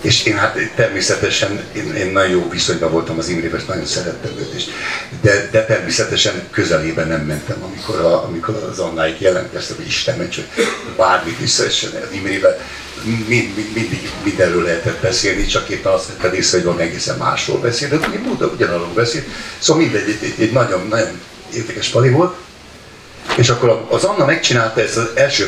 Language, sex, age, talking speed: Hungarian, male, 60-79, 165 wpm